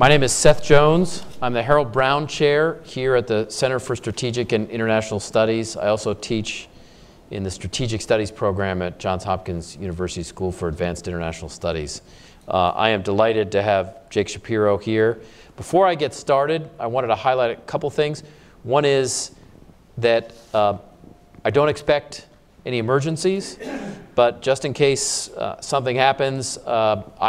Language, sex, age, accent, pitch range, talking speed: English, male, 40-59, American, 95-135 Hz, 160 wpm